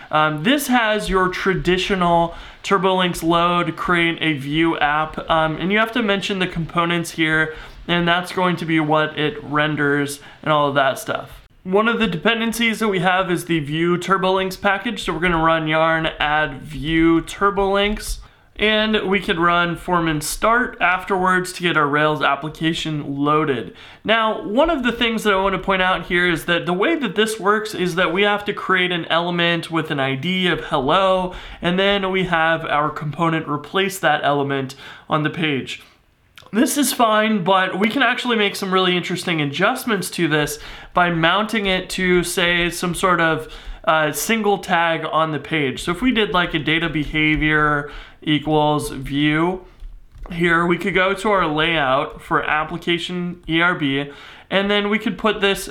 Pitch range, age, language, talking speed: 155-195 Hz, 20-39, English, 175 wpm